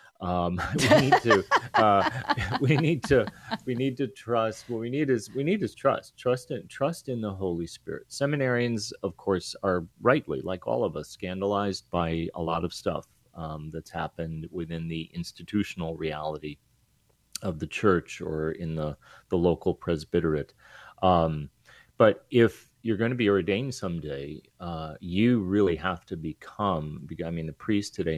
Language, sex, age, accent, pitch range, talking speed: English, male, 30-49, American, 80-110 Hz, 165 wpm